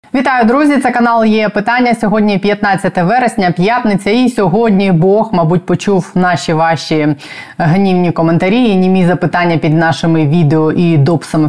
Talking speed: 140 wpm